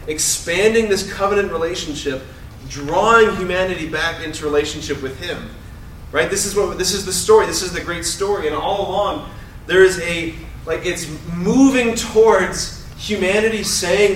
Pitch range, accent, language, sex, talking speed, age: 145-200 Hz, American, English, male, 155 wpm, 30-49